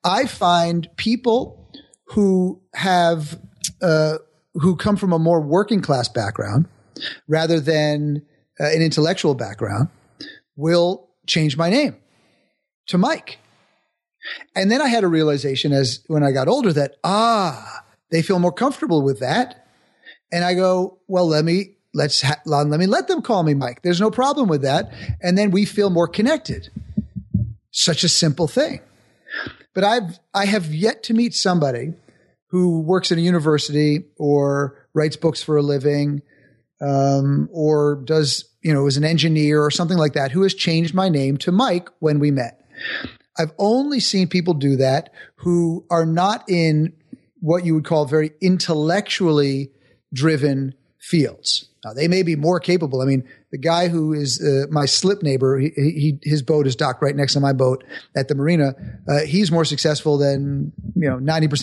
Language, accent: English, American